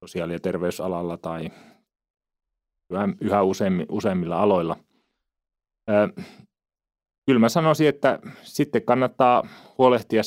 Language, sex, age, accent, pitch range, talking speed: Finnish, male, 30-49, native, 85-115 Hz, 90 wpm